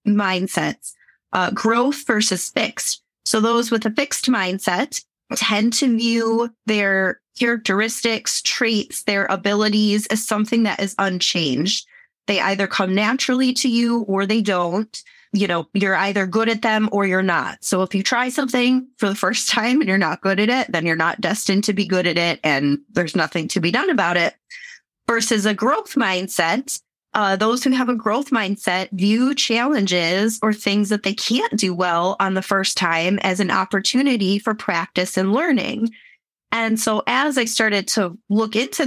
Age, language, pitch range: 30-49, English, 195-235 Hz